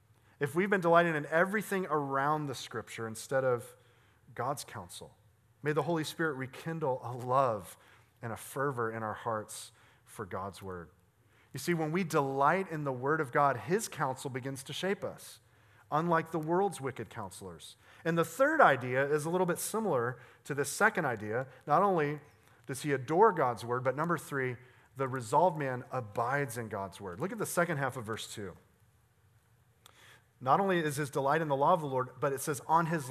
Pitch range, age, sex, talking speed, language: 115-155 Hz, 40-59, male, 190 wpm, English